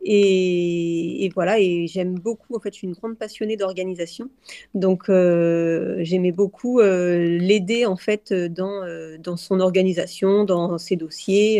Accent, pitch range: French, 180-215 Hz